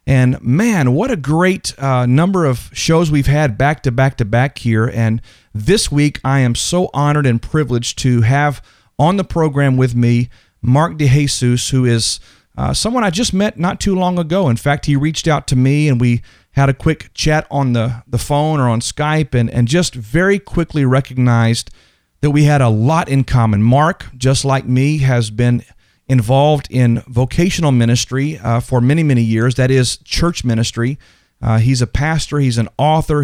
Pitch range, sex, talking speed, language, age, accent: 120-150 Hz, male, 190 wpm, English, 40-59, American